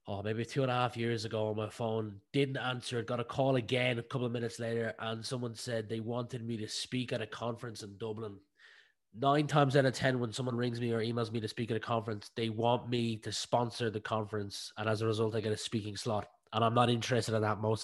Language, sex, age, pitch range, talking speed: English, male, 20-39, 115-135 Hz, 250 wpm